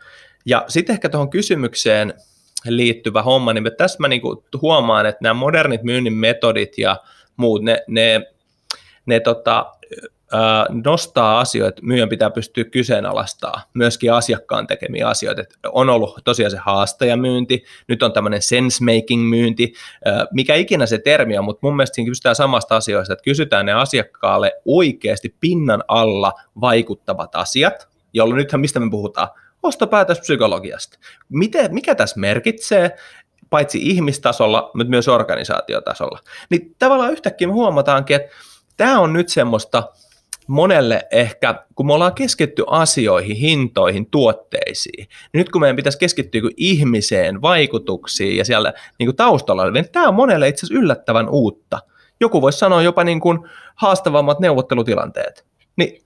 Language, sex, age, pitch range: Finnish, male, 20-39, 115-170 Hz